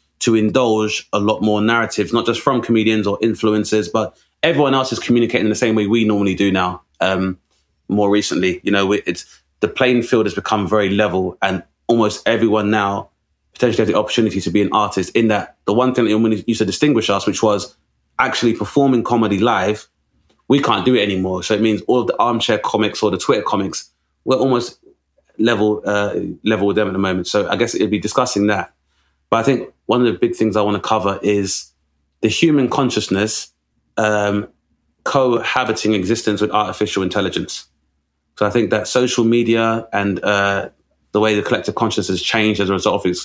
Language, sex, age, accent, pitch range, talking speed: English, male, 20-39, British, 95-115 Hz, 195 wpm